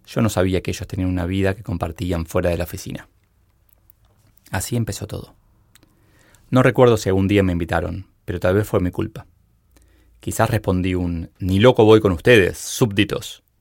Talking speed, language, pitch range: 170 wpm, Spanish, 90-105 Hz